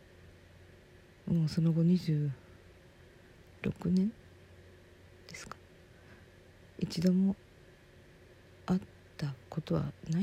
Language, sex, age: Japanese, female, 40-59